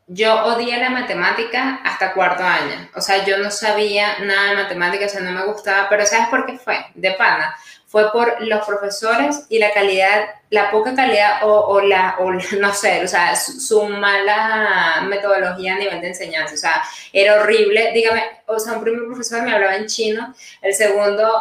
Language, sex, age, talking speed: Spanish, female, 10-29, 195 wpm